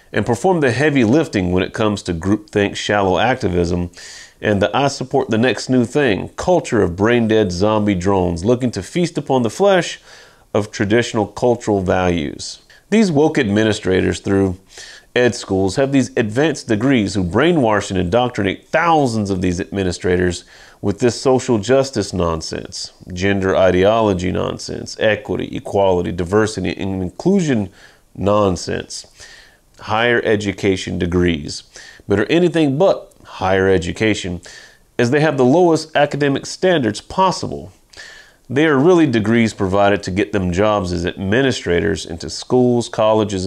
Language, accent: English, American